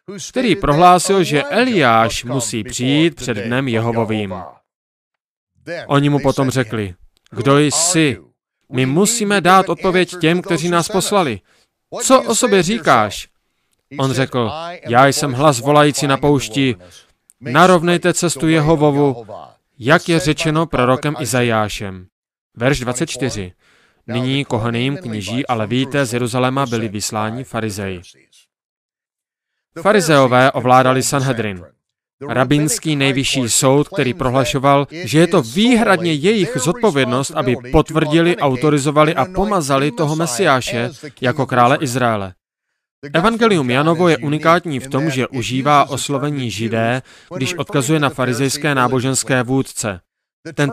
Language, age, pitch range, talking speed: Slovak, 30-49, 125-165 Hz, 115 wpm